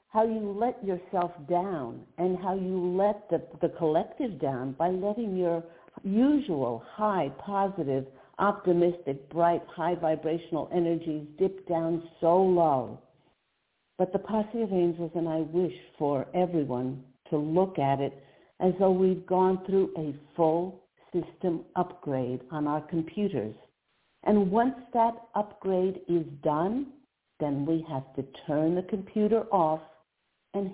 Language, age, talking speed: English, 60-79, 135 wpm